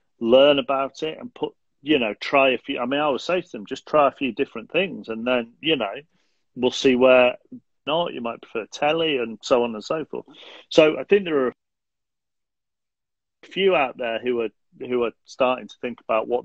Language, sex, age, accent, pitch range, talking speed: English, male, 40-59, British, 115-150 Hz, 215 wpm